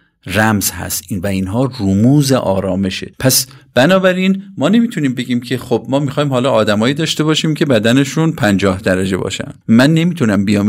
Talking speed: 155 wpm